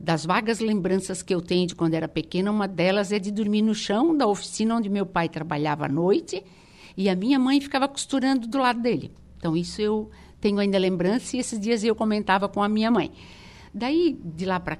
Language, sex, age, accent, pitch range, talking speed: Portuguese, female, 60-79, Brazilian, 170-210 Hz, 215 wpm